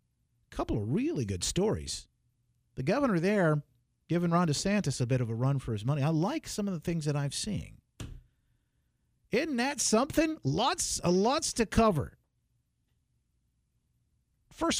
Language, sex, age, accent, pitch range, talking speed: English, male, 50-69, American, 130-215 Hz, 145 wpm